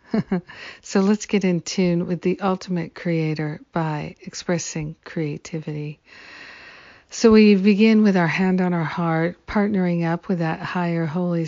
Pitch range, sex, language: 170-195 Hz, female, English